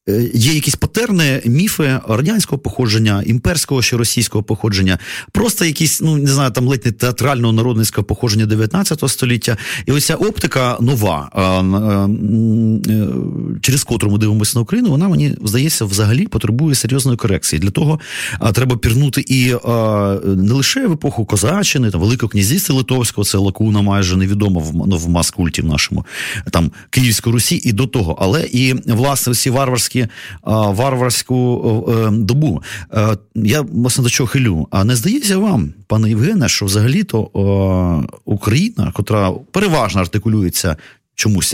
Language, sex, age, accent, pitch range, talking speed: Ukrainian, male, 30-49, native, 105-135 Hz, 135 wpm